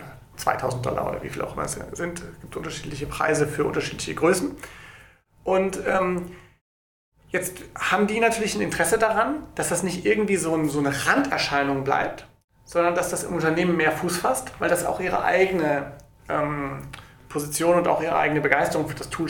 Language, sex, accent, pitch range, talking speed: German, male, German, 145-175 Hz, 180 wpm